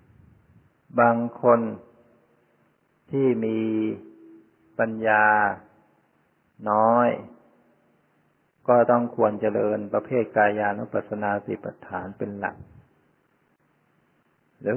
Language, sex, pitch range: Thai, male, 105-115 Hz